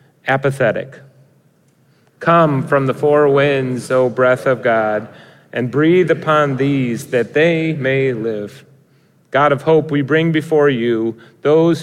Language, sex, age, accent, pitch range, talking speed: English, male, 30-49, American, 120-145 Hz, 130 wpm